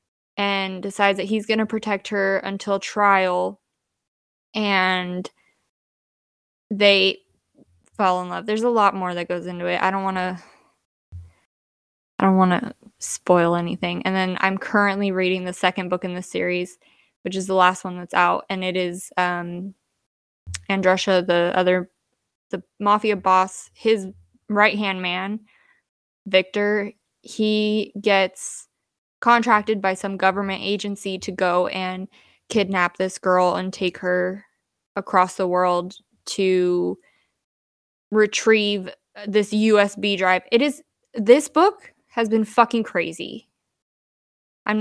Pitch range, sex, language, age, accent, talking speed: 185-215 Hz, female, English, 20-39, American, 135 wpm